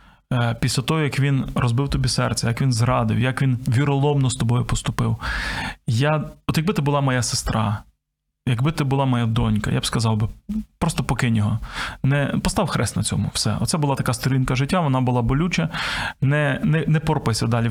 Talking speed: 185 wpm